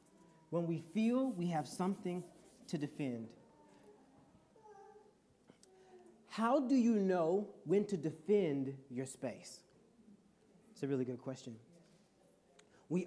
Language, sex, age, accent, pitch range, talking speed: English, male, 40-59, American, 175-245 Hz, 105 wpm